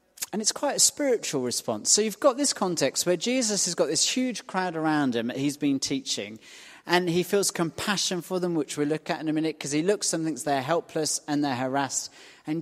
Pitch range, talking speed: 145-190 Hz, 230 wpm